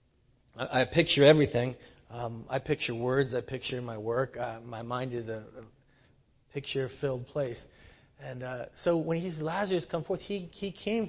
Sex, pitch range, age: male, 120-150 Hz, 40-59